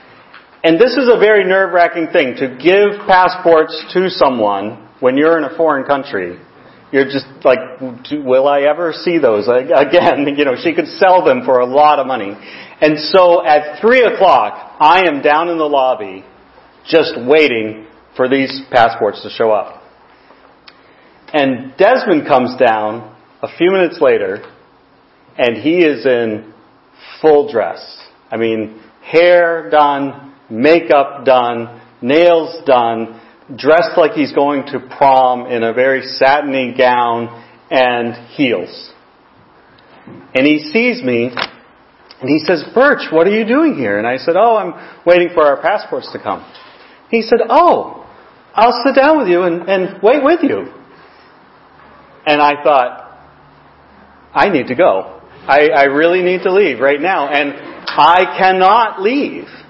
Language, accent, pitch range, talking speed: English, American, 125-175 Hz, 150 wpm